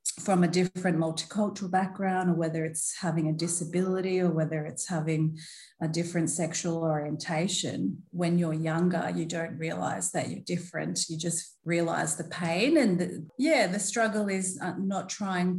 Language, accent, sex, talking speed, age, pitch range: English, Australian, female, 155 wpm, 30-49, 165-185 Hz